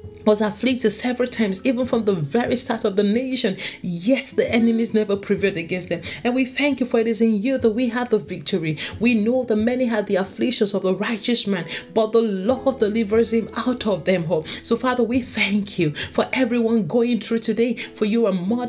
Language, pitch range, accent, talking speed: English, 195-240 Hz, Nigerian, 215 wpm